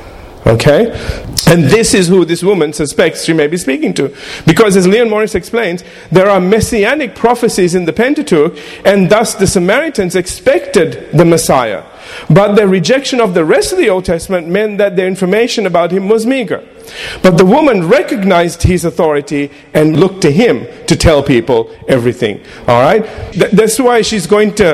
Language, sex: English, male